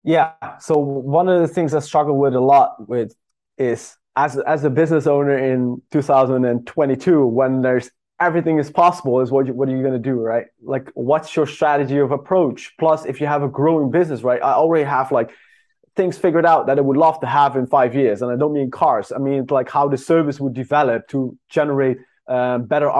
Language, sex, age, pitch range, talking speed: English, male, 20-39, 130-160 Hz, 215 wpm